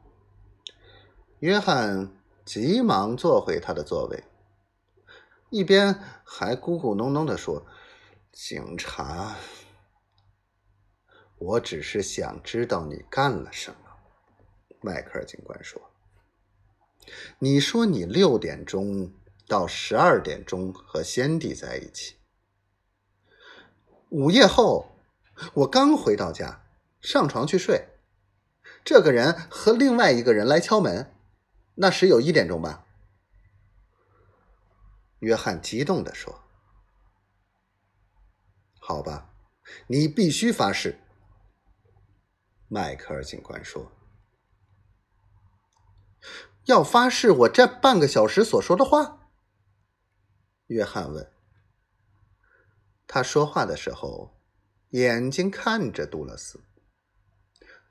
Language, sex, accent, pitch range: Chinese, male, native, 100-155 Hz